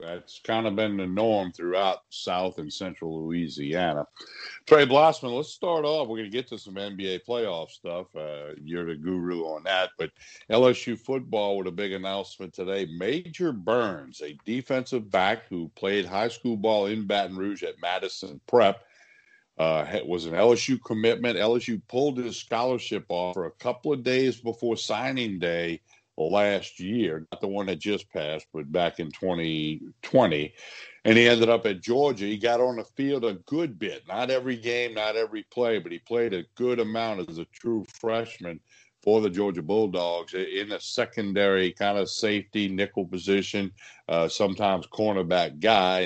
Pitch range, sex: 90-115 Hz, male